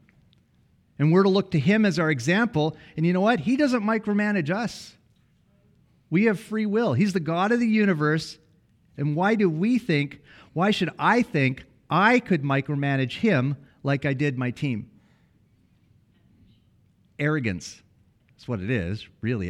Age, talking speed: 40-59, 155 wpm